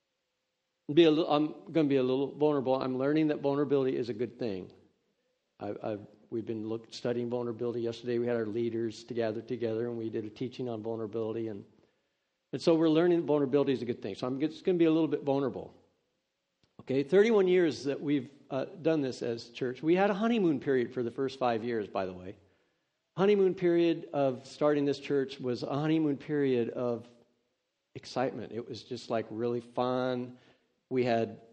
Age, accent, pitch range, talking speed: 50-69, American, 125-155 Hz, 185 wpm